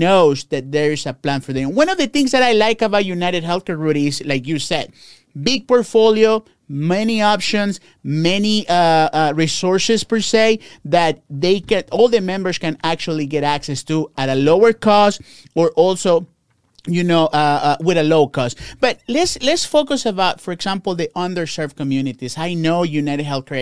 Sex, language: male, English